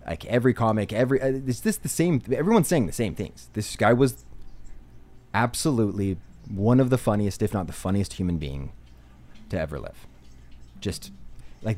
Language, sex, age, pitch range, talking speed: English, male, 30-49, 90-130 Hz, 170 wpm